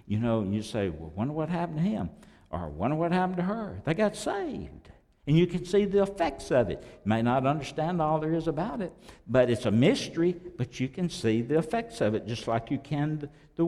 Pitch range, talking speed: 115-155 Hz, 235 wpm